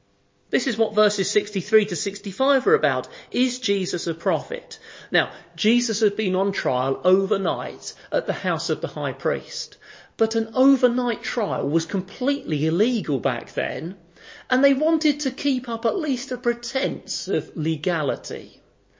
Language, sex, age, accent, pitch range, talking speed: English, male, 40-59, British, 165-250 Hz, 150 wpm